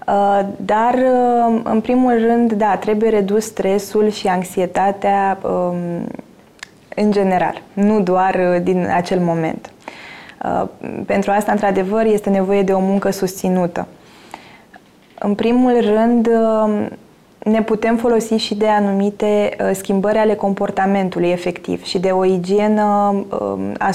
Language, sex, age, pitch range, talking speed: Romanian, female, 20-39, 190-225 Hz, 110 wpm